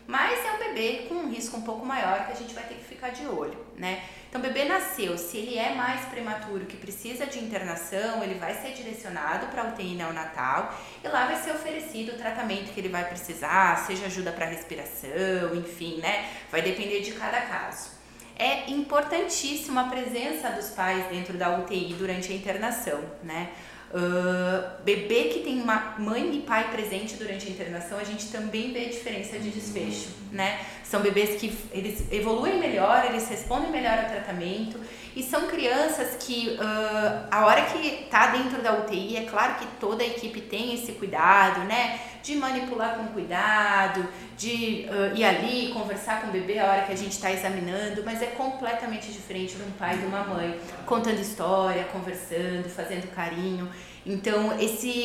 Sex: female